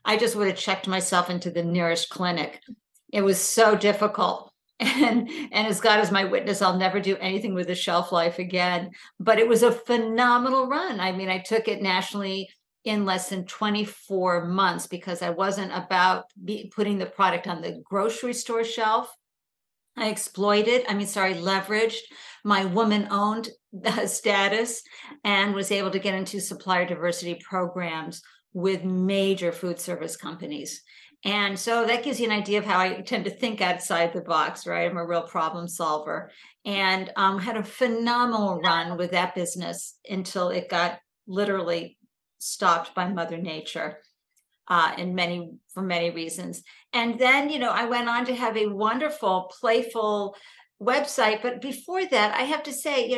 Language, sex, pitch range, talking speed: English, female, 180-230 Hz, 170 wpm